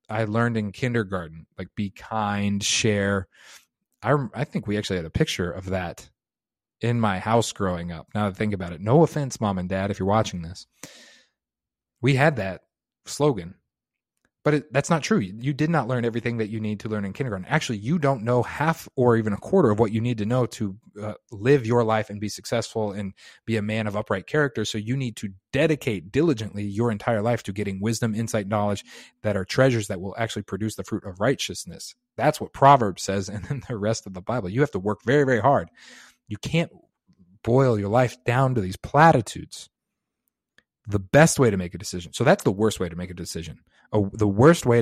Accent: American